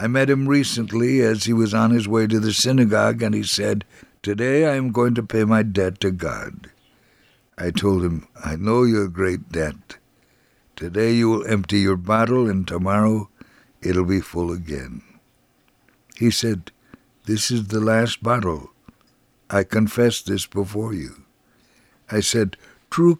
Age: 60-79